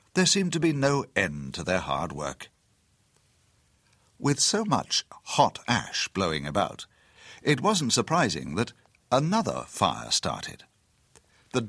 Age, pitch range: 60-79, 95-130 Hz